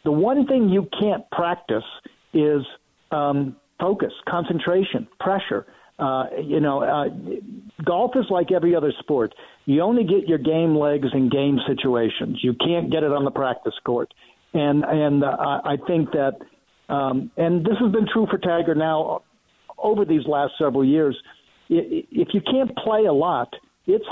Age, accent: 50-69, American